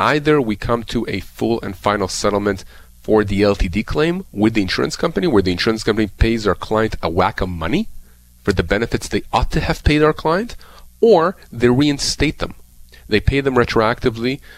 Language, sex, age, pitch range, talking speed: English, male, 40-59, 95-115 Hz, 190 wpm